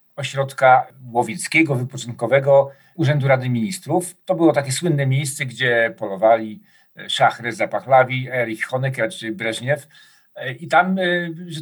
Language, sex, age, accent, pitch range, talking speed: Polish, male, 50-69, native, 130-170 Hz, 115 wpm